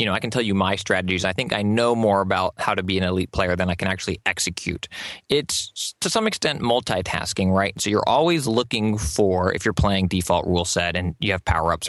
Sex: male